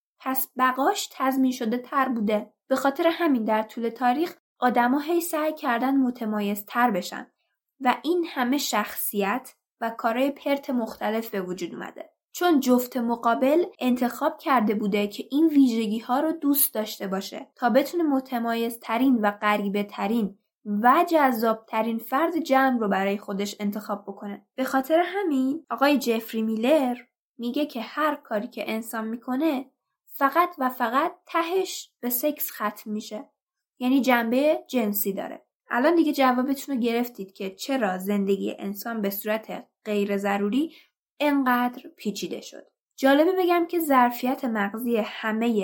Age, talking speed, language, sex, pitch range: 20-39, 140 wpm, Persian, female, 215-275 Hz